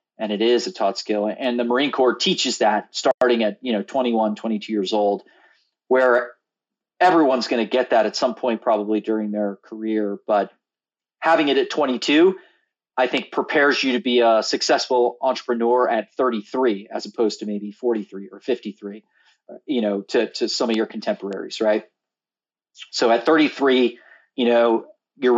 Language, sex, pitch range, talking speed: English, male, 110-135 Hz, 170 wpm